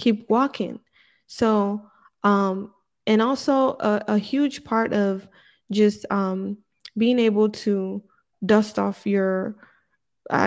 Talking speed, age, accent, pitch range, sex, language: 115 wpm, 20-39, American, 195-215 Hz, female, English